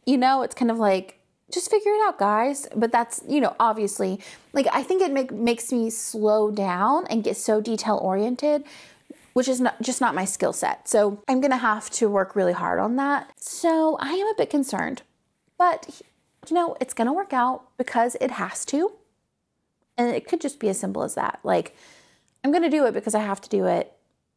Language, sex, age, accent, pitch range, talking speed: English, female, 30-49, American, 205-285 Hz, 210 wpm